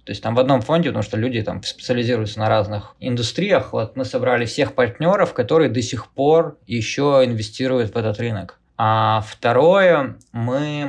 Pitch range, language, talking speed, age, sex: 110-135 Hz, Russian, 170 wpm, 20-39, male